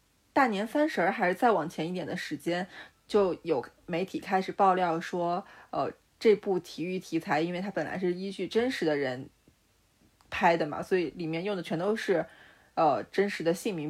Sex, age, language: female, 20-39, Chinese